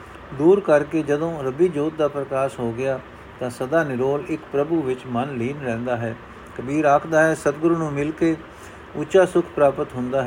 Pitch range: 130-165 Hz